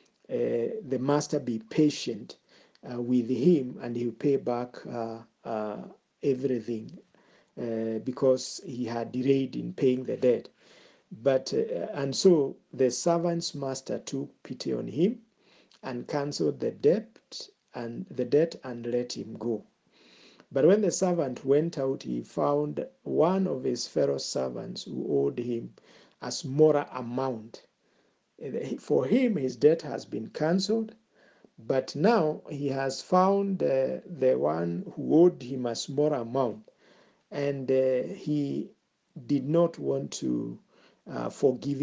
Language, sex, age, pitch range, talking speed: English, male, 50-69, 120-155 Hz, 135 wpm